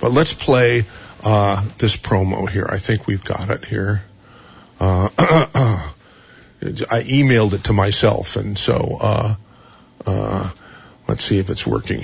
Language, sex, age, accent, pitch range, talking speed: English, male, 50-69, American, 90-115 Hz, 140 wpm